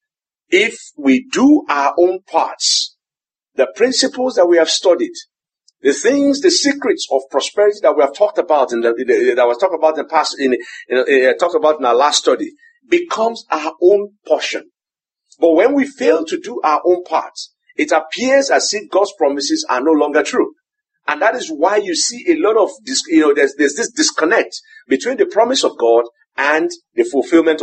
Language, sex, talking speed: English, male, 190 wpm